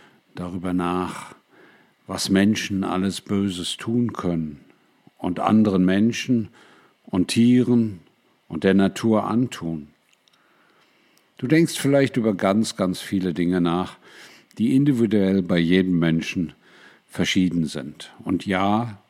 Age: 50-69